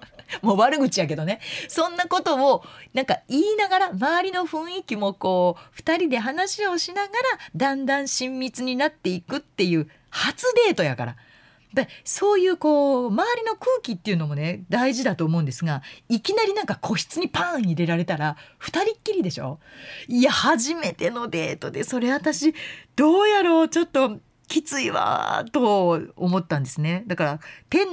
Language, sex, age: Japanese, female, 30-49